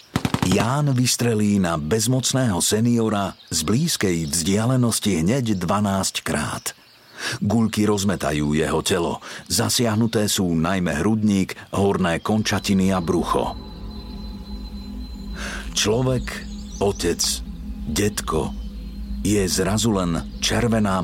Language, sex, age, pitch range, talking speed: Slovak, male, 50-69, 90-115 Hz, 85 wpm